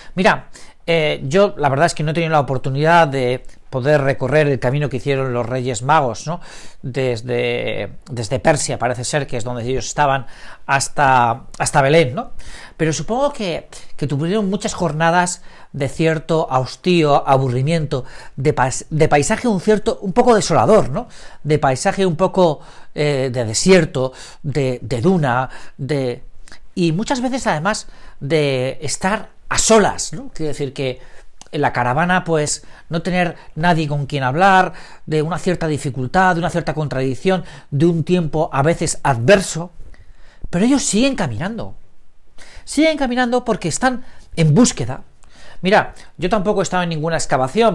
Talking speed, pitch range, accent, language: 155 wpm, 135-180 Hz, Spanish, Spanish